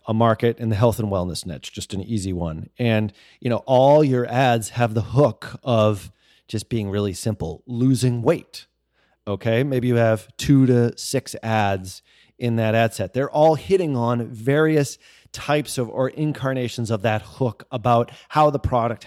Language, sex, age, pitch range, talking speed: English, male, 30-49, 115-145 Hz, 175 wpm